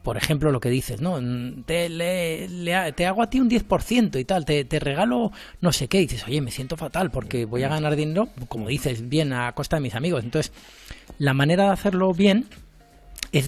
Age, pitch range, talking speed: 30-49, 125-160 Hz, 220 wpm